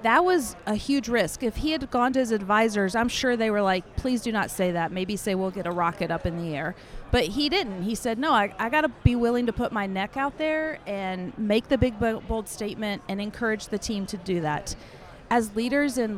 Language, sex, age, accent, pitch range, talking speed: English, female, 40-59, American, 195-245 Hz, 245 wpm